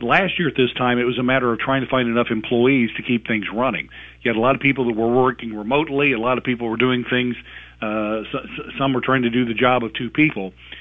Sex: male